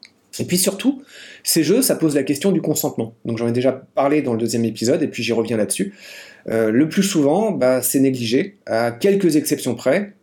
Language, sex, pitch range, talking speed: French, male, 125-170 Hz, 210 wpm